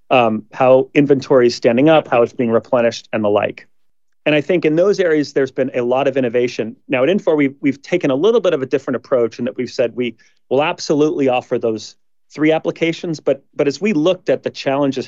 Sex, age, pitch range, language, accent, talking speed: male, 30-49, 120-150 Hz, English, American, 225 wpm